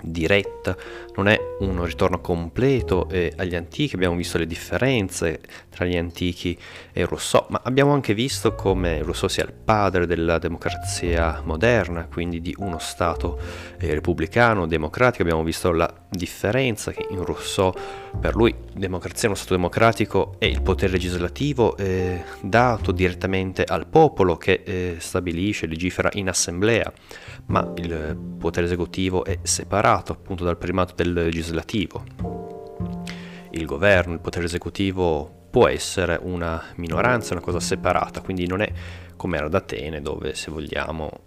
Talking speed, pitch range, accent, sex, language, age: 145 wpm, 85-100 Hz, native, male, Italian, 30-49